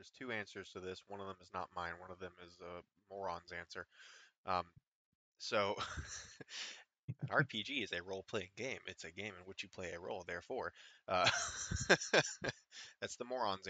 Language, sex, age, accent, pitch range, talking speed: English, male, 20-39, American, 85-100 Hz, 175 wpm